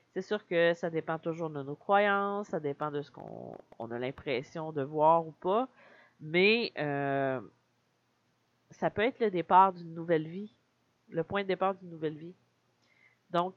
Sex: female